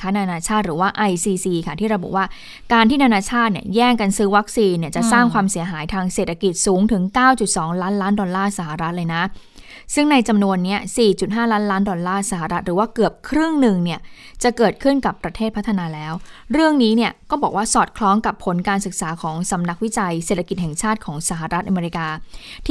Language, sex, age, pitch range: Thai, female, 20-39, 185-235 Hz